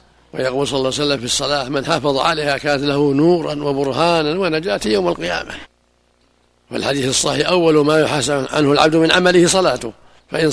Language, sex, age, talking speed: Arabic, male, 60-79, 170 wpm